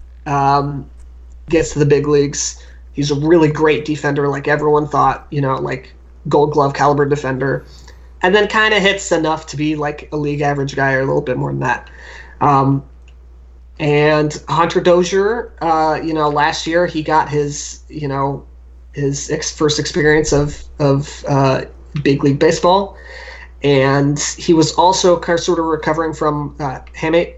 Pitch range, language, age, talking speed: 135-160 Hz, English, 30-49, 160 wpm